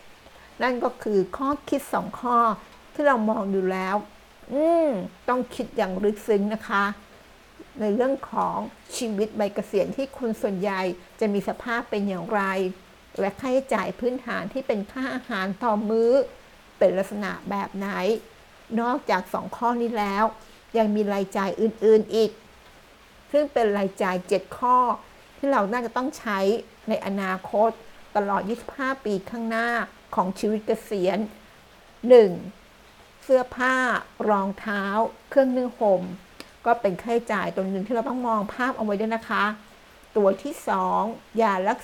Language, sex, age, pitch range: Thai, female, 60-79, 200-245 Hz